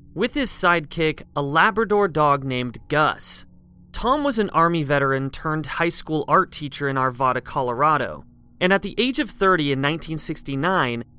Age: 30-49